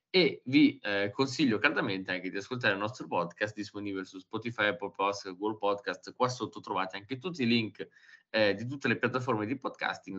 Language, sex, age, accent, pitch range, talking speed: Italian, male, 20-39, native, 100-120 Hz, 190 wpm